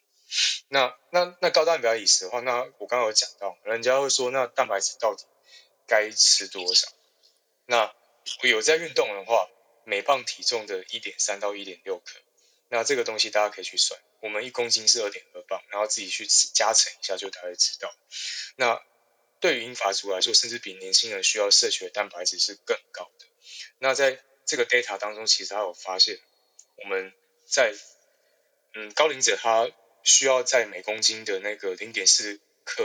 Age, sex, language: 20-39, male, Chinese